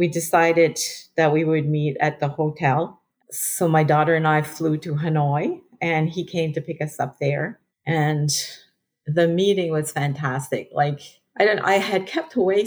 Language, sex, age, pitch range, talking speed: English, female, 40-59, 150-175 Hz, 175 wpm